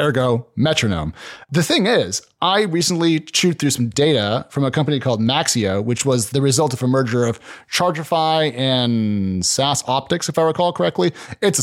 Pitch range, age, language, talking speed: 125-170 Hz, 30-49, English, 175 wpm